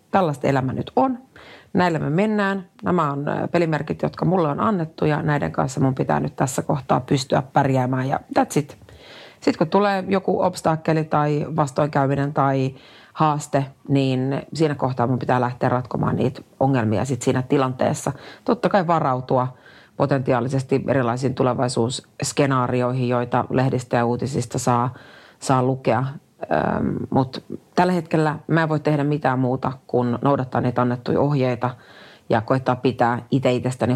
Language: Finnish